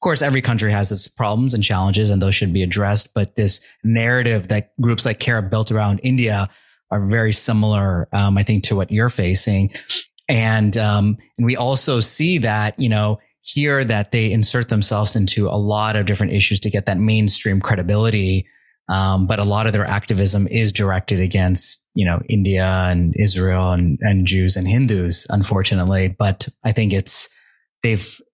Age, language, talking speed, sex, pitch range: 30-49, English, 180 wpm, male, 95-110 Hz